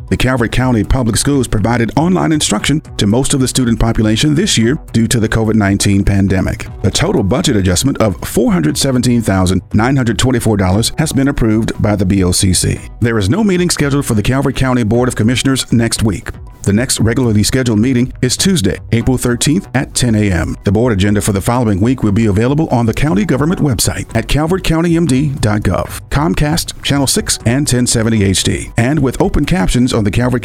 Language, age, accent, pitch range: English, 50-69, American, 110-135 Hz